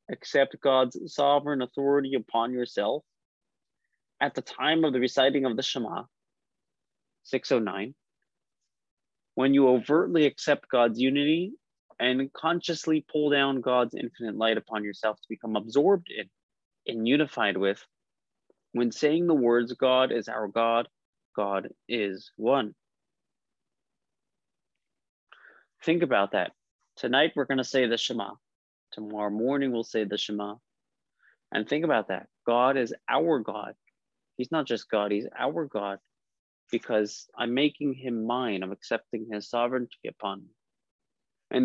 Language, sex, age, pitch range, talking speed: English, male, 30-49, 110-140 Hz, 135 wpm